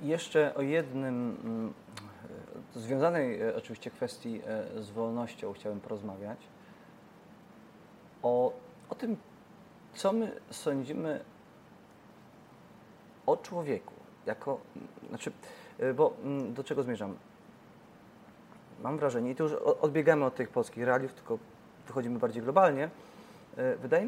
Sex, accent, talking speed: male, native, 95 wpm